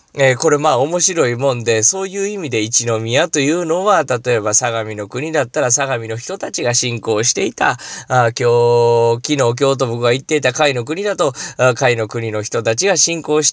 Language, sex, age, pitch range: Japanese, male, 20-39, 115-170 Hz